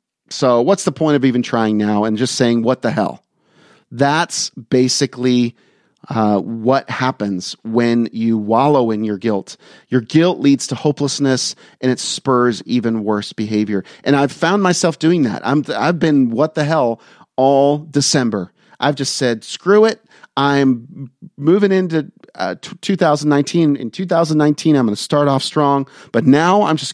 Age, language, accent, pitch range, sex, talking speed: 40-59, English, American, 115-155 Hz, male, 160 wpm